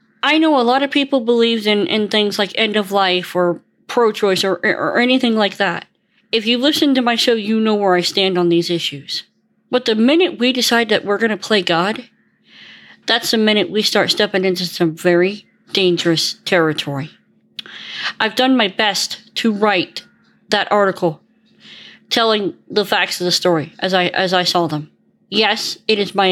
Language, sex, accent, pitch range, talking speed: English, female, American, 185-225 Hz, 185 wpm